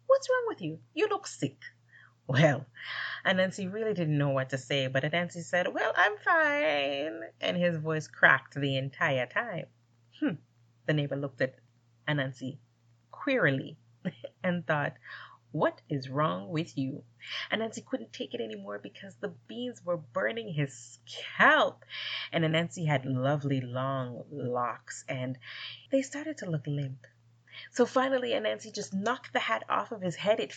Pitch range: 130-190 Hz